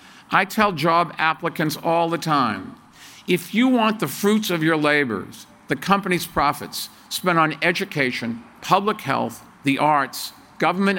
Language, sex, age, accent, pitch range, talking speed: English, male, 50-69, American, 135-190 Hz, 140 wpm